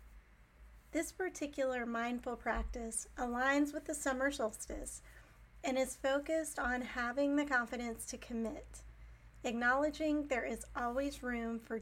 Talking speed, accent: 120 wpm, American